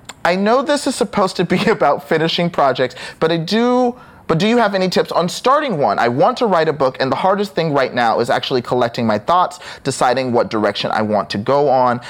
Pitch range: 125-190 Hz